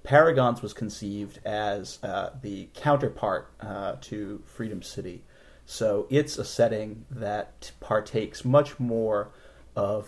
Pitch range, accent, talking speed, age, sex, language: 105-125 Hz, American, 120 wpm, 30-49, male, English